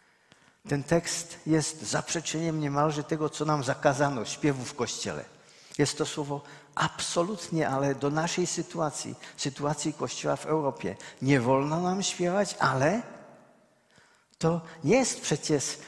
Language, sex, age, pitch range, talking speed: Czech, male, 50-69, 125-165 Hz, 125 wpm